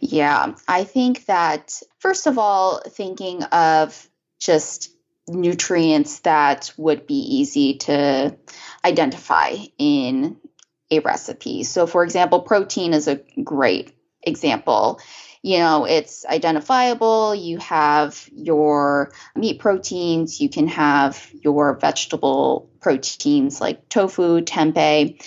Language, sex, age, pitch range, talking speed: English, female, 10-29, 150-225 Hz, 110 wpm